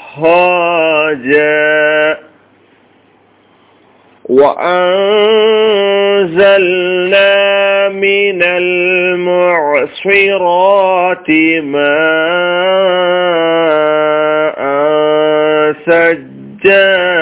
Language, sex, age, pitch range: Malayalam, male, 40-59, 155-195 Hz